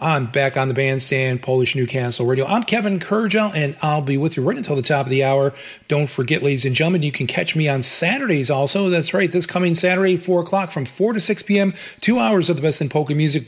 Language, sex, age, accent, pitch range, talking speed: English, male, 40-59, American, 130-175 Hz, 245 wpm